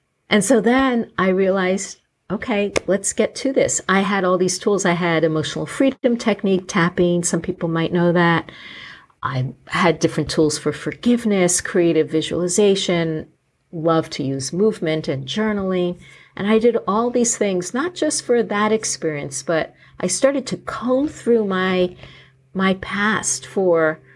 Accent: American